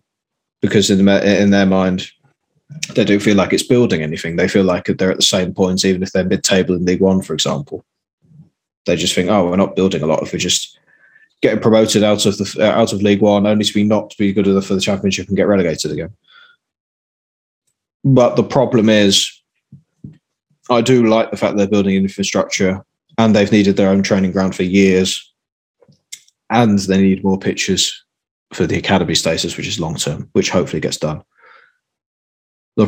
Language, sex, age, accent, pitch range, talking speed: English, male, 20-39, British, 95-120 Hz, 190 wpm